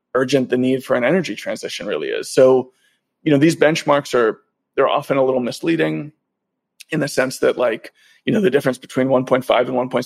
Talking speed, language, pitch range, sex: 210 wpm, English, 125-145 Hz, male